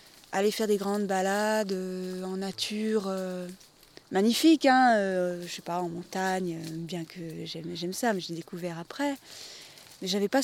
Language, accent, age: French, French, 20-39